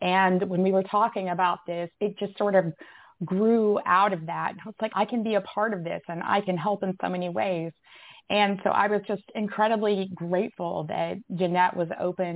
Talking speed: 210 wpm